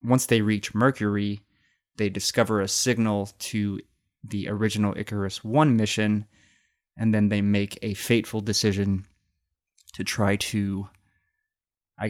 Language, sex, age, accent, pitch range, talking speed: English, male, 20-39, American, 100-115 Hz, 125 wpm